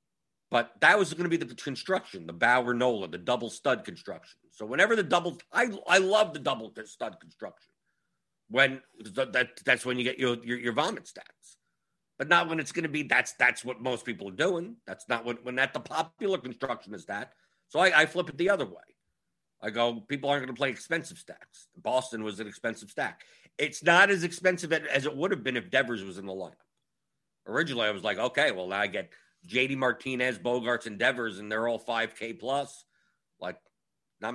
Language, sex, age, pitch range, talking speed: English, male, 50-69, 115-160 Hz, 205 wpm